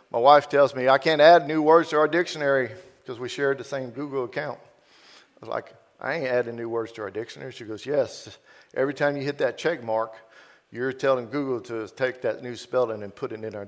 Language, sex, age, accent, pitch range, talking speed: English, male, 50-69, American, 120-155 Hz, 230 wpm